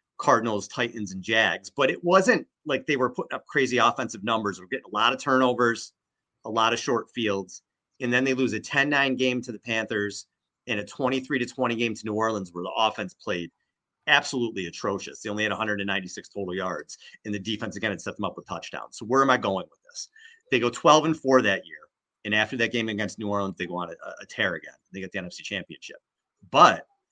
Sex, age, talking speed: male, 30-49, 225 wpm